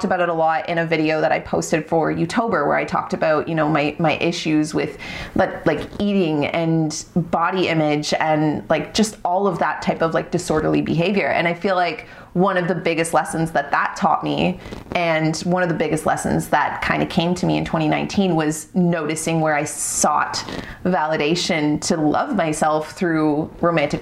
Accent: American